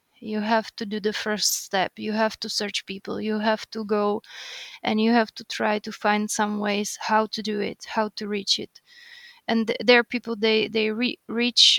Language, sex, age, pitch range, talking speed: English, female, 20-39, 210-240 Hz, 205 wpm